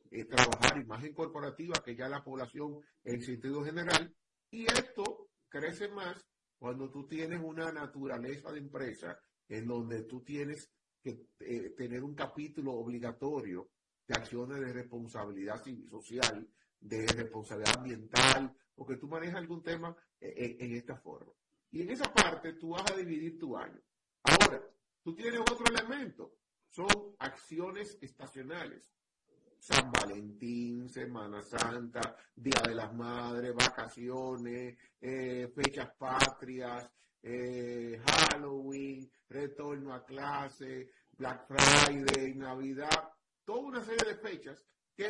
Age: 40-59